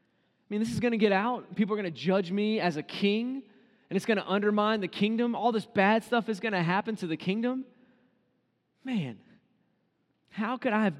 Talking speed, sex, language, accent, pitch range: 220 wpm, male, English, American, 150-205 Hz